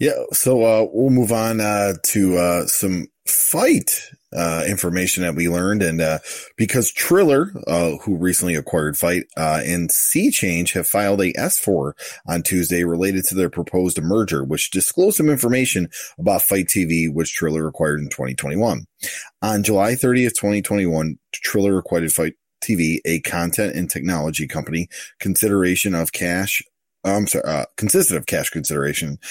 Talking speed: 150 wpm